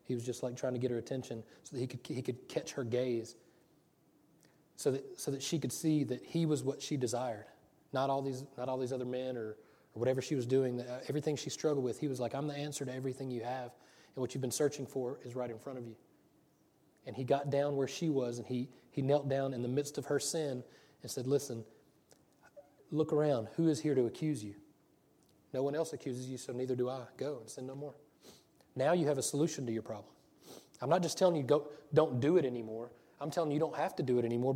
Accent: American